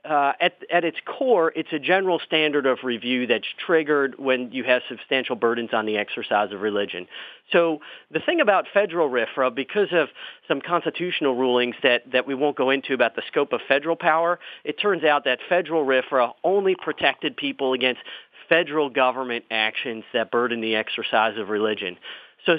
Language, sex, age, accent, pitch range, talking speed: English, male, 40-59, American, 125-160 Hz, 175 wpm